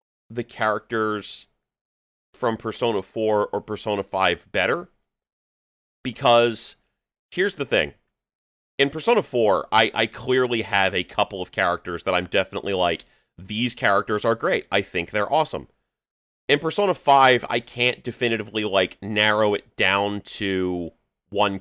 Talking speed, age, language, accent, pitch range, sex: 135 wpm, 30-49, English, American, 100-120 Hz, male